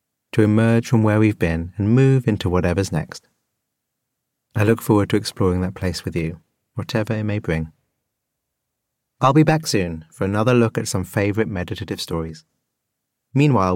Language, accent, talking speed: English, British, 160 wpm